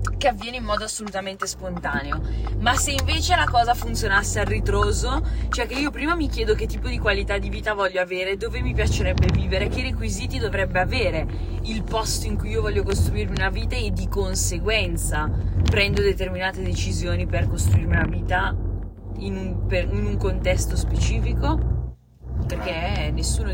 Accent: native